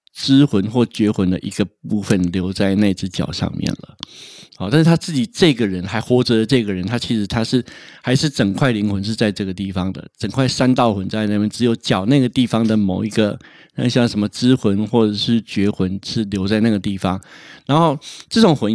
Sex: male